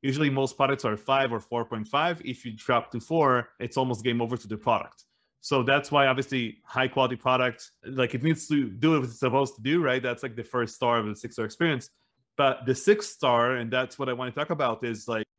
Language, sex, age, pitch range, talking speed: English, male, 30-49, 120-140 Hz, 240 wpm